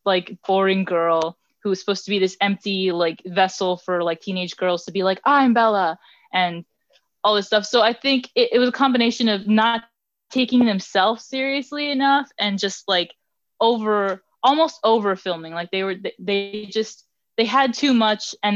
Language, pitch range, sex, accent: English, 185-230 Hz, female, American